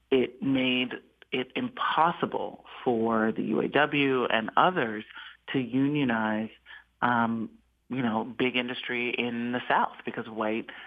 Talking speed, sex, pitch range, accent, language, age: 115 wpm, male, 120-145 Hz, American, English, 40-59